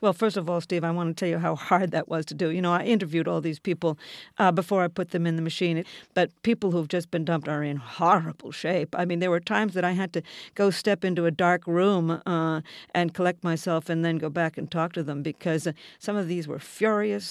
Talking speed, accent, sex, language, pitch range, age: 255 wpm, American, female, English, 170-210 Hz, 50-69